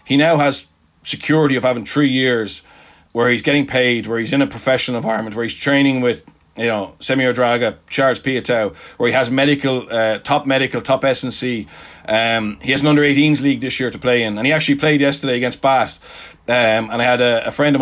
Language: English